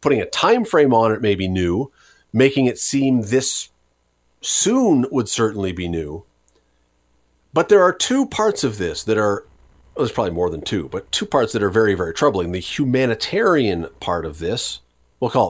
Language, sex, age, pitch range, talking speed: English, male, 40-59, 100-150 Hz, 180 wpm